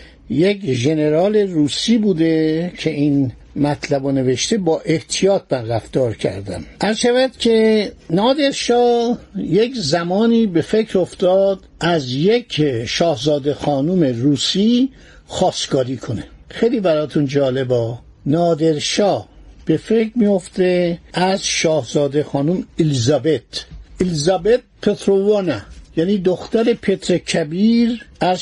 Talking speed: 95 wpm